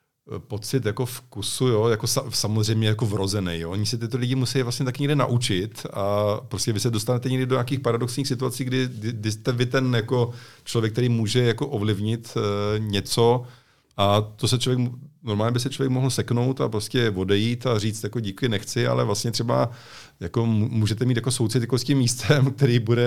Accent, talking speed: native, 185 wpm